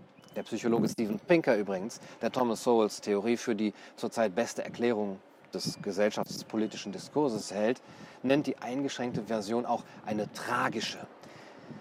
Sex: male